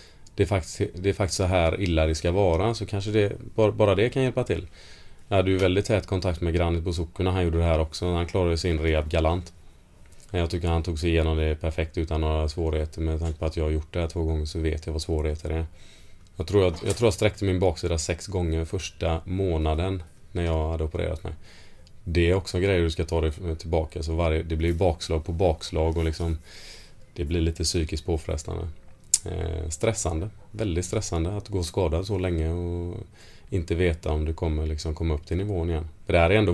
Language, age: Swedish, 30-49